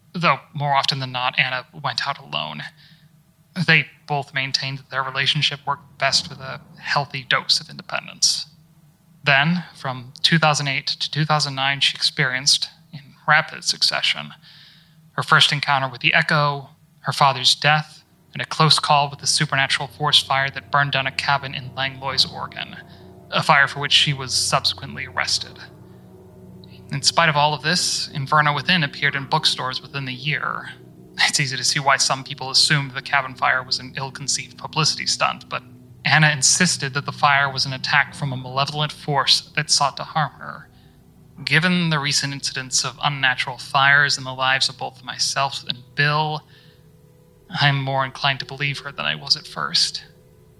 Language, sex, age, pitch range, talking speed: English, male, 30-49, 135-155 Hz, 165 wpm